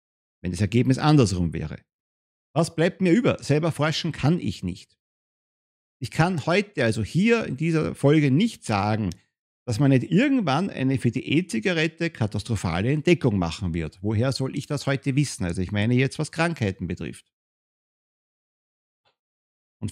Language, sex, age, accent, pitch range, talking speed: German, male, 50-69, German, 110-165 Hz, 150 wpm